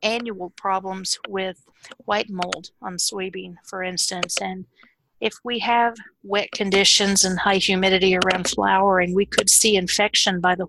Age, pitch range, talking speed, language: 50-69, 185-220 Hz, 145 wpm, English